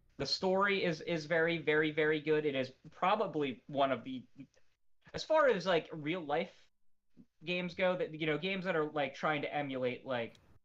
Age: 20-39